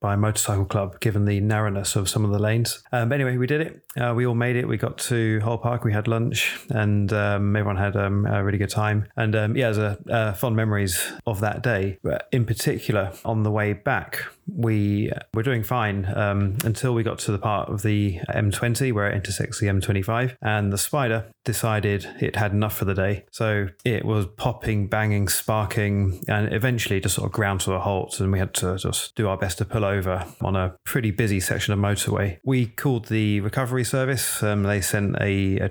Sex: male